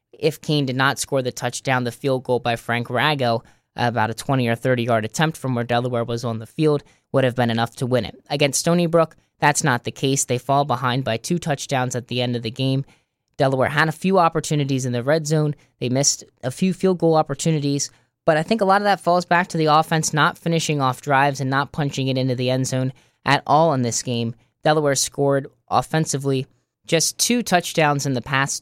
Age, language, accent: 10-29, English, American